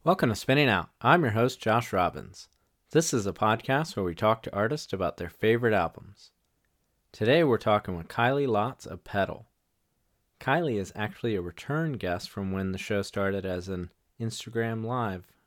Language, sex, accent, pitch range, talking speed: English, male, American, 95-120 Hz, 175 wpm